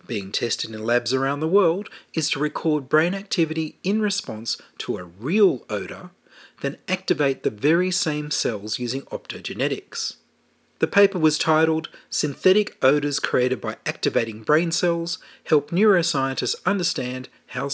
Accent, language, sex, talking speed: Australian, English, male, 140 wpm